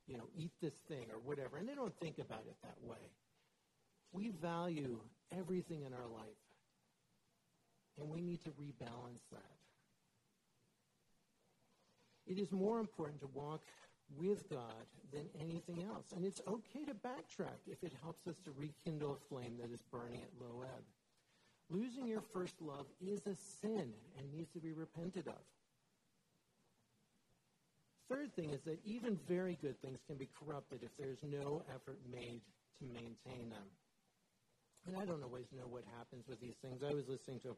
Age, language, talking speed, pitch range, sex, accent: 50-69, English, 165 wpm, 120-170 Hz, male, American